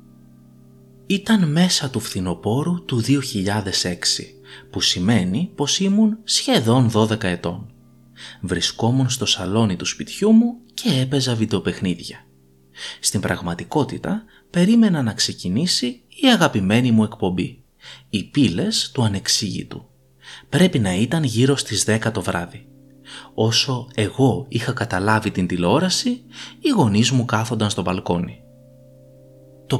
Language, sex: Greek, male